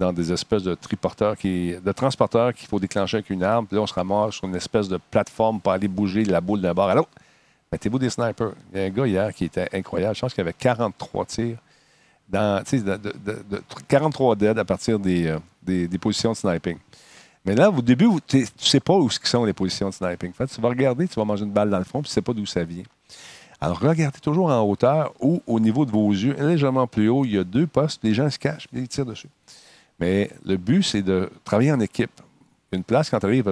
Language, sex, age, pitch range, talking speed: French, male, 50-69, 100-140 Hz, 250 wpm